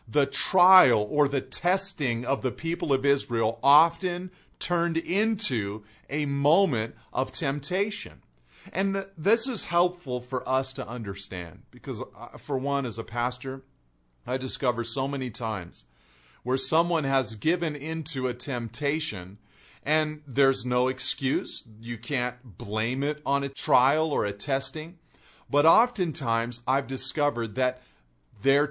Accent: American